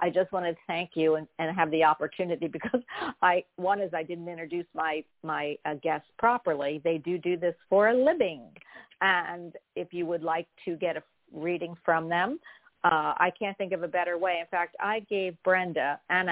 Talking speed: 200 wpm